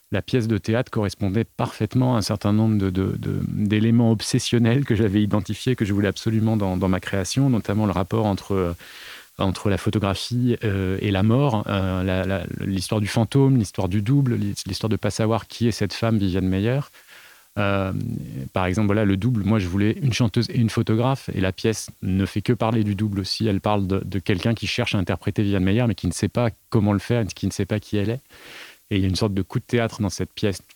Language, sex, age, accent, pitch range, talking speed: French, male, 30-49, French, 100-120 Hz, 235 wpm